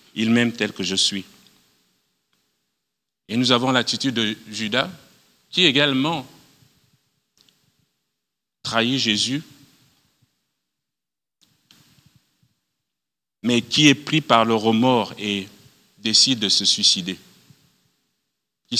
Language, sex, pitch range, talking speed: French, male, 100-125 Hz, 95 wpm